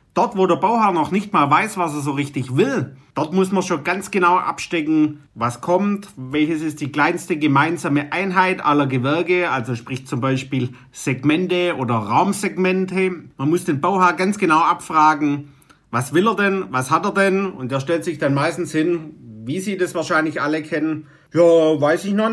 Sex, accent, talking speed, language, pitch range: male, German, 185 wpm, German, 145-190 Hz